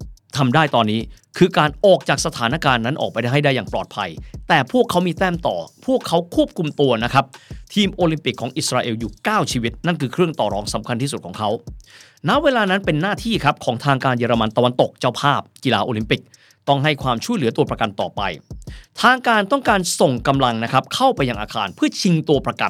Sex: male